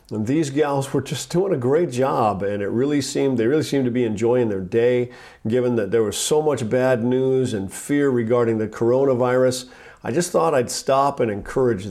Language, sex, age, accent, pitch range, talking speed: English, male, 50-69, American, 115-135 Hz, 205 wpm